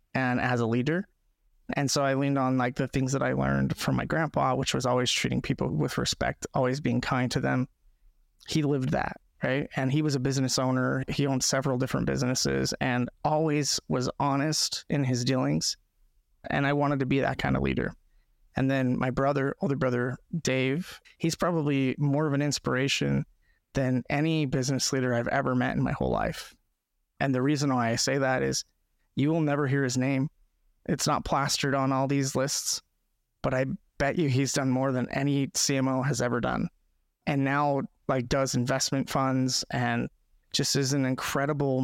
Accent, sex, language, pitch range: American, male, English, 125-145 Hz